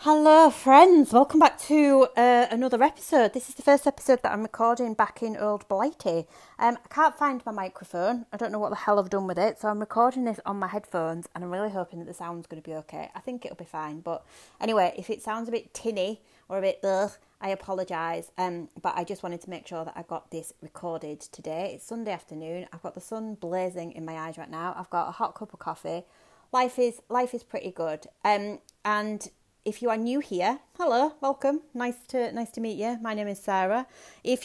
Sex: female